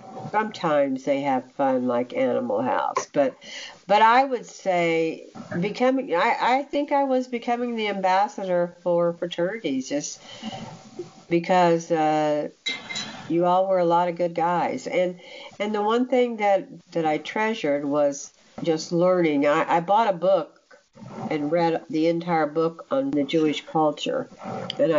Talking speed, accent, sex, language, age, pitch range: 145 wpm, American, female, English, 60-79, 165-255 Hz